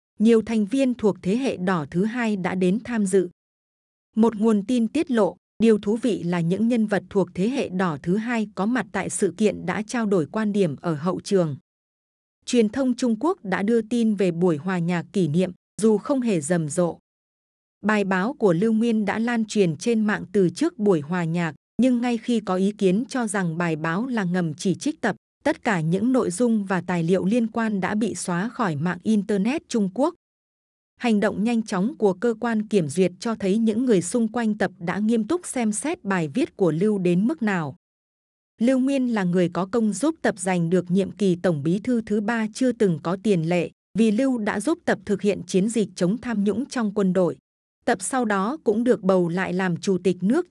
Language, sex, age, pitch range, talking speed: Vietnamese, female, 20-39, 185-235 Hz, 220 wpm